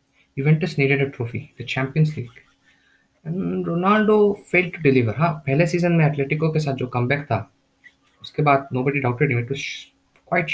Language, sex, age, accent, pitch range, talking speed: Hindi, male, 20-39, native, 120-145 Hz, 165 wpm